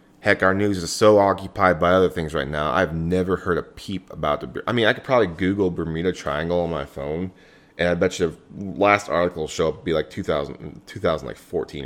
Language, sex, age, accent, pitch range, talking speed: English, male, 20-39, American, 85-105 Hz, 215 wpm